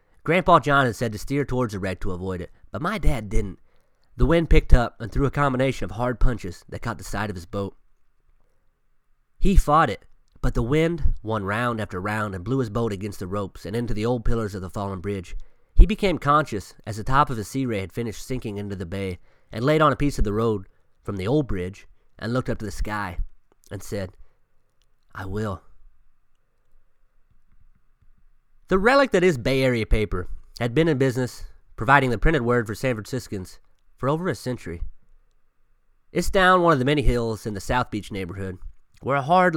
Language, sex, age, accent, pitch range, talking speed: English, male, 30-49, American, 100-130 Hz, 205 wpm